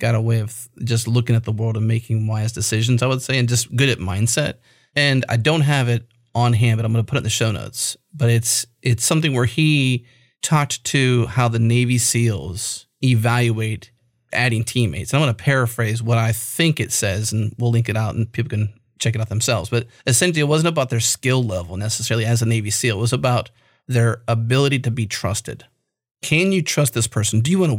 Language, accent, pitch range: English, American, 115-135 Hz